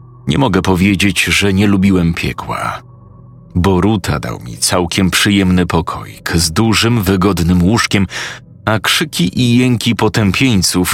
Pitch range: 90-115 Hz